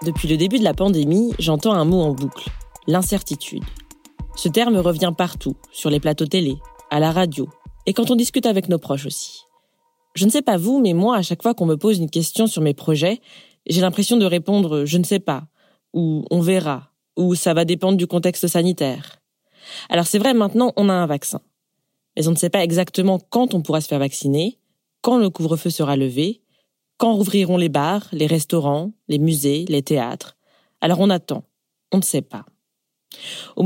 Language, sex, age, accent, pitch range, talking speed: French, female, 20-39, French, 155-200 Hz, 205 wpm